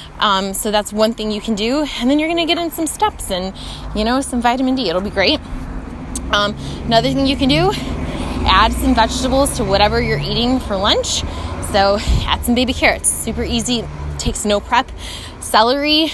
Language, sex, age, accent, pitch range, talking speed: English, female, 20-39, American, 200-245 Hz, 190 wpm